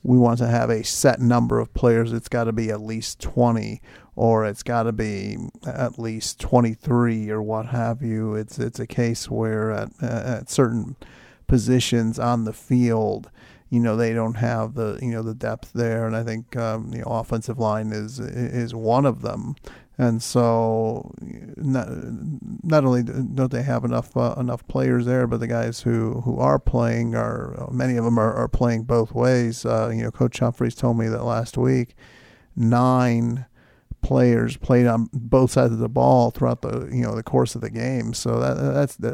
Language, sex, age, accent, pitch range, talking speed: English, male, 40-59, American, 115-125 Hz, 195 wpm